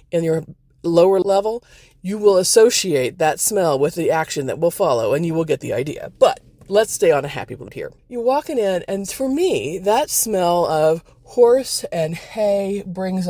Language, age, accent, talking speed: English, 40-59, American, 190 wpm